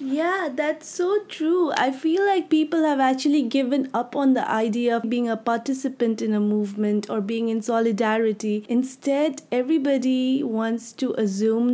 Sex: female